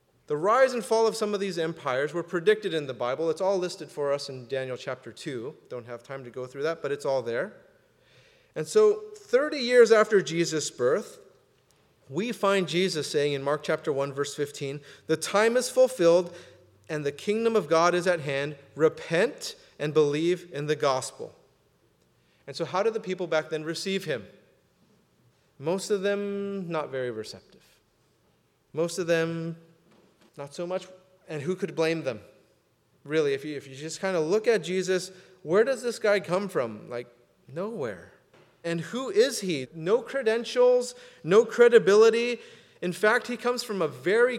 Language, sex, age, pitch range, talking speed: English, male, 30-49, 150-235 Hz, 175 wpm